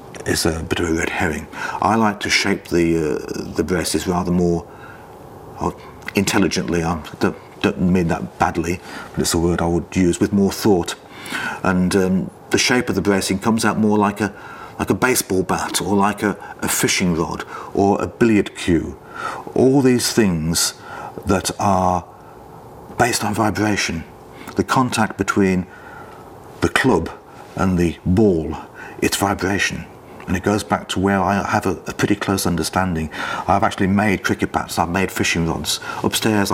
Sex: male